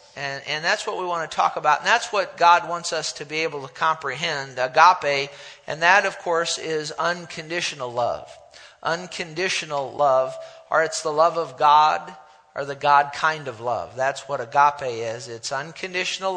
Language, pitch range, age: English, 145-180 Hz, 50-69